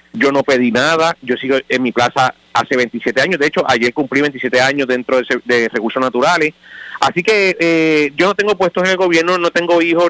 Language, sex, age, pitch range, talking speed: Spanish, male, 30-49, 135-175 Hz, 210 wpm